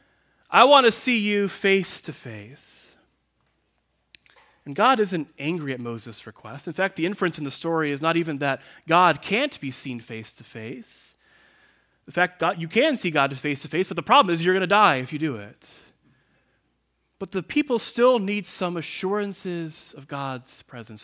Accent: American